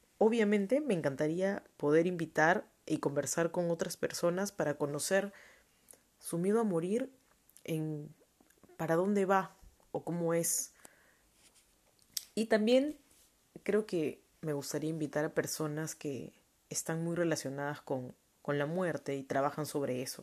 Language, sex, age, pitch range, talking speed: Spanish, female, 20-39, 150-185 Hz, 130 wpm